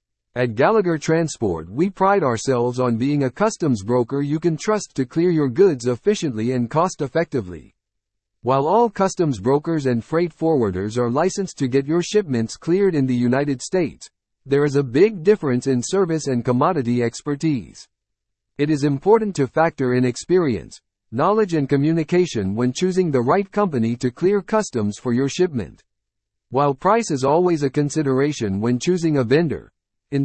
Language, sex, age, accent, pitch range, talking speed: English, male, 50-69, American, 120-175 Hz, 165 wpm